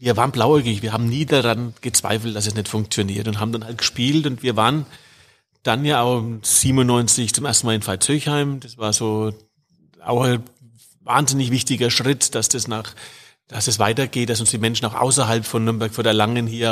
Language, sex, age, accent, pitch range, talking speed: German, male, 40-59, German, 110-135 Hz, 195 wpm